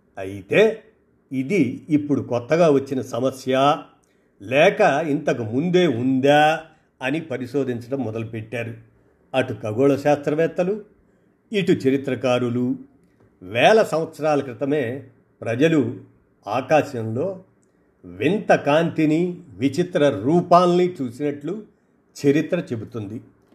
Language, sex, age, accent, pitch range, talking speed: Telugu, male, 50-69, native, 130-165 Hz, 75 wpm